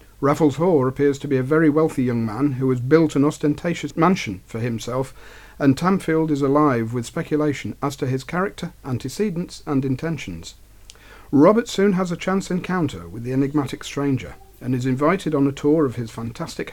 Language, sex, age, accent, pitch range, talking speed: English, male, 50-69, British, 125-155 Hz, 180 wpm